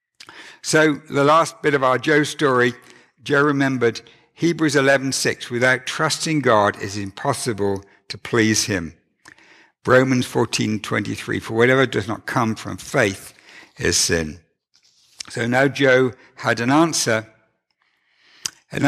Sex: male